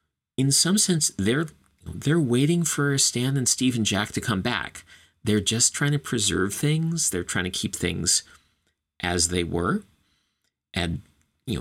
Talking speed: 160 wpm